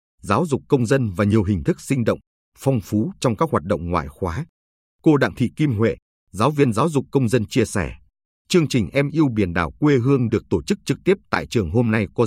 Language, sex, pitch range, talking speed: Vietnamese, male, 100-145 Hz, 240 wpm